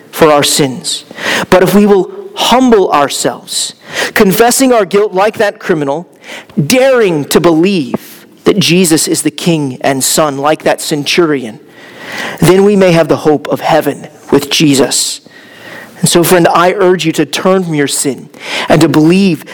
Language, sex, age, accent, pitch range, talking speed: English, male, 40-59, American, 150-185 Hz, 160 wpm